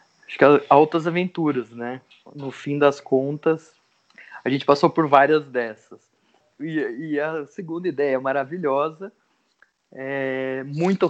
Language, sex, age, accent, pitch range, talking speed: Portuguese, male, 20-39, Brazilian, 130-170 Hz, 125 wpm